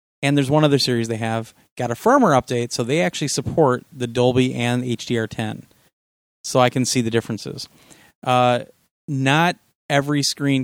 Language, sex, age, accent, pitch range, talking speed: English, male, 30-49, American, 115-140 Hz, 170 wpm